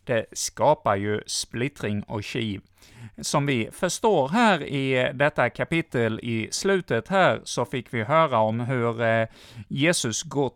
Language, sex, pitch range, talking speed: Swedish, male, 110-150 Hz, 140 wpm